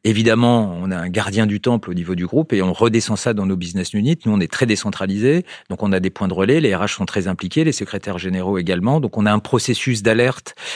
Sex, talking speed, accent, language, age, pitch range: male, 255 wpm, French, French, 40-59, 95-120 Hz